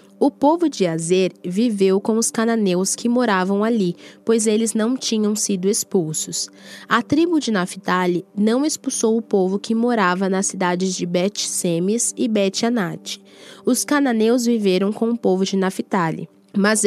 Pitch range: 185-235 Hz